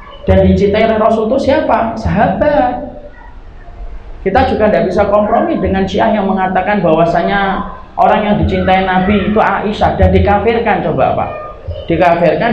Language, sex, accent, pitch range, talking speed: Indonesian, male, native, 150-220 Hz, 130 wpm